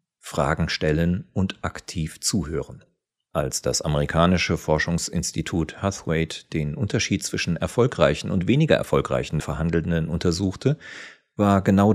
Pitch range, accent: 85-110 Hz, German